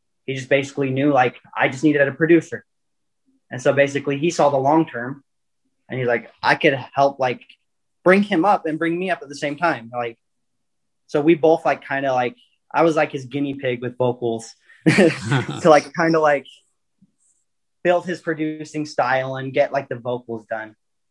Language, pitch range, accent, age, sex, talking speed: English, 120-155 Hz, American, 30-49, male, 190 wpm